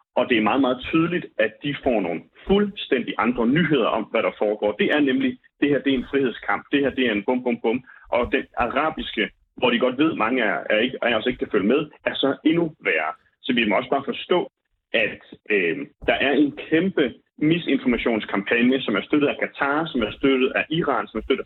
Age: 30-49